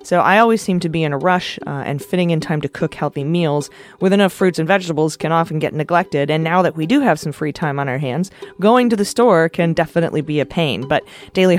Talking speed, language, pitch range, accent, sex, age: 260 wpm, English, 155-190 Hz, American, female, 30-49